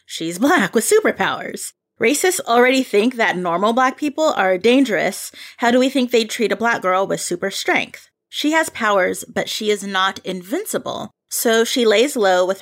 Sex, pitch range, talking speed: female, 185-250 Hz, 180 wpm